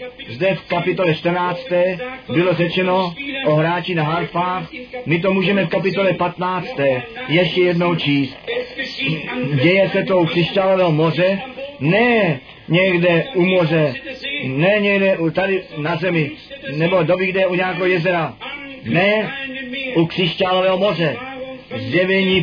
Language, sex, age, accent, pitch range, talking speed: Czech, male, 40-59, native, 170-210 Hz, 125 wpm